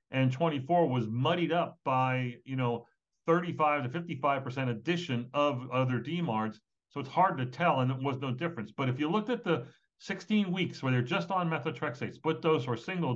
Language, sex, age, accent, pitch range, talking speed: English, male, 60-79, American, 125-160 Hz, 190 wpm